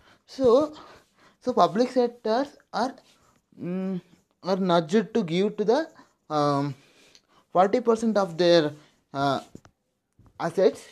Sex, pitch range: male, 175-235 Hz